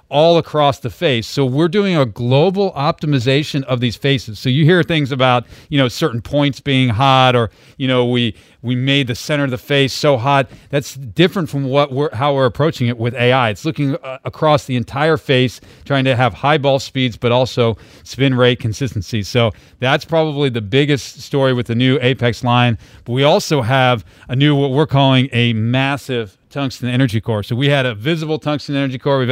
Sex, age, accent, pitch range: male, 40-59, American, 120-140 Hz